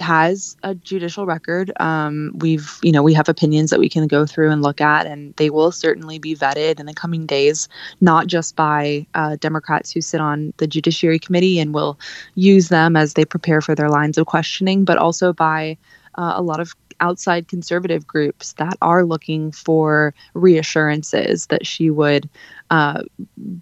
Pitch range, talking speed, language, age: 150-175 Hz, 180 wpm, English, 20-39